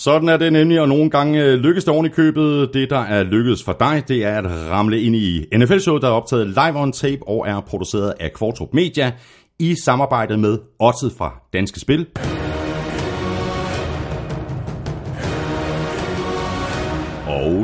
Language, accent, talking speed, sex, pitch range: Danish, native, 150 wpm, male, 90-135 Hz